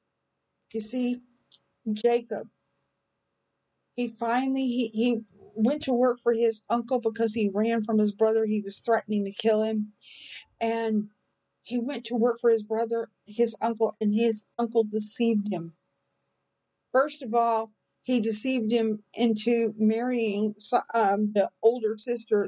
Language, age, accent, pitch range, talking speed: English, 50-69, American, 220-250 Hz, 140 wpm